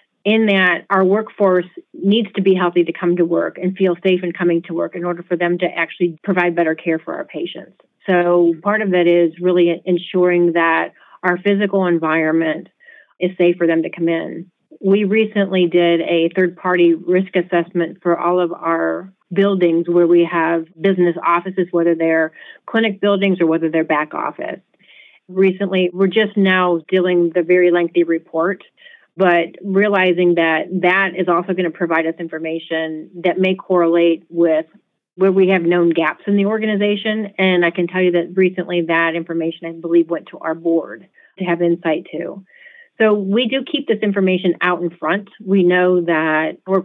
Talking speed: 180 wpm